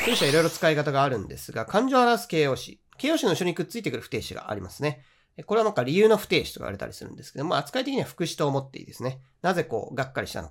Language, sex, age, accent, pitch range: Japanese, male, 40-59, native, 115-170 Hz